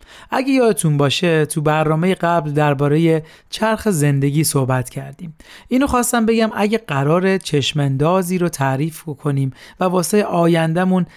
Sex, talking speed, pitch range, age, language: male, 125 wpm, 145-180 Hz, 40-59, Persian